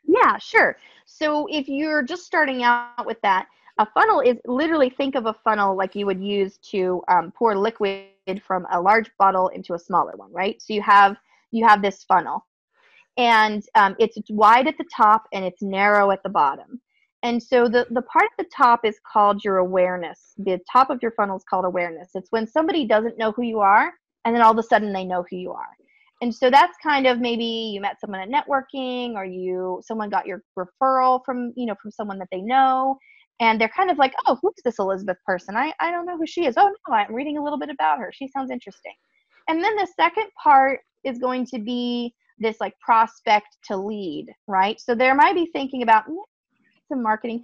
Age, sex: 30-49, female